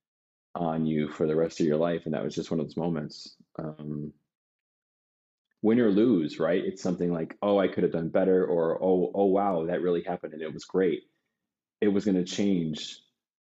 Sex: male